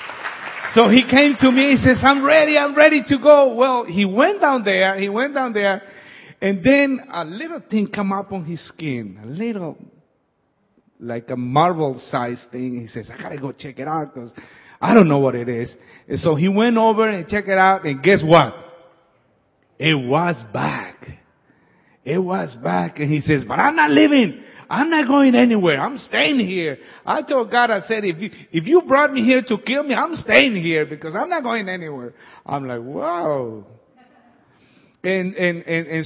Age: 50-69